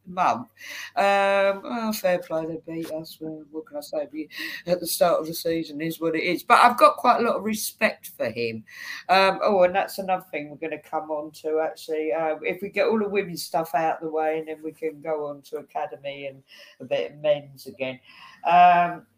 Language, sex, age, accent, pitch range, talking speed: English, female, 50-69, British, 145-195 Hz, 220 wpm